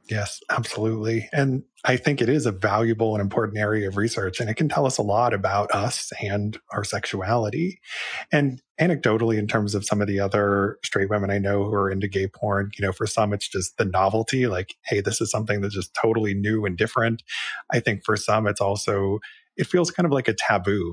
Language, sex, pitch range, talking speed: English, male, 100-120 Hz, 220 wpm